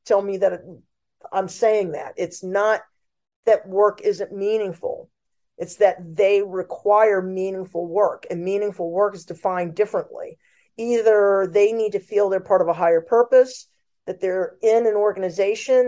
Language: English